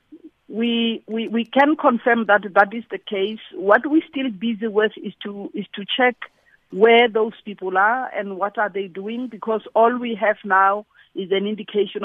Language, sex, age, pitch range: English, female, 50-69, 185-230 Hz